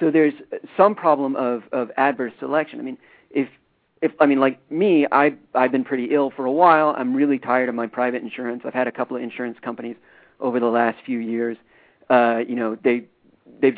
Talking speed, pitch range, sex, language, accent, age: 210 wpm, 125-160 Hz, male, English, American, 40-59